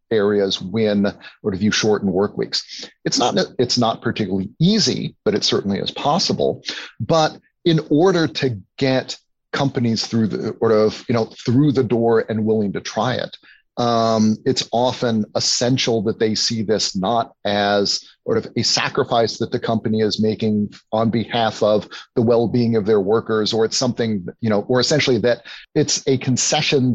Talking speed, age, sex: 170 wpm, 40-59, male